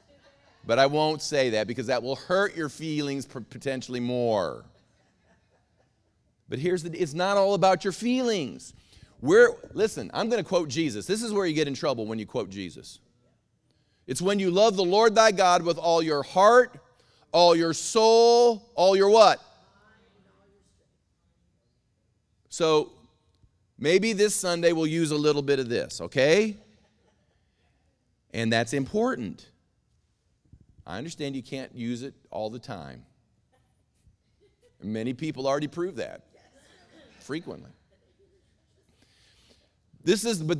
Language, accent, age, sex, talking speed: English, American, 40-59, male, 140 wpm